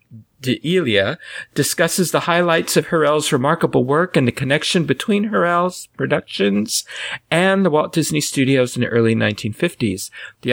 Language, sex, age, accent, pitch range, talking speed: English, male, 40-59, American, 125-170 Hz, 135 wpm